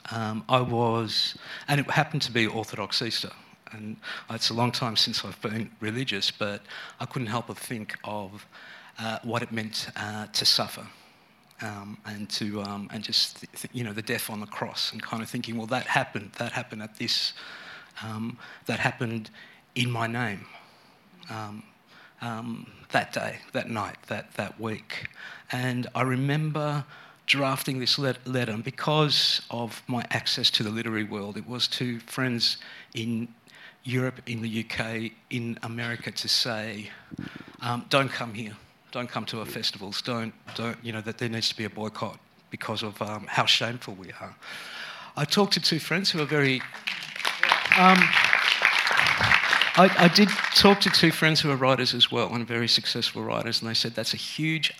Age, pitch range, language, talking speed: 50-69, 110-130 Hz, English, 175 wpm